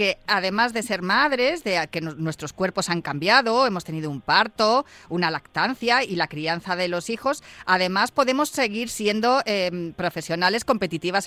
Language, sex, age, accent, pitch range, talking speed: Spanish, female, 30-49, Spanish, 185-240 Hz, 160 wpm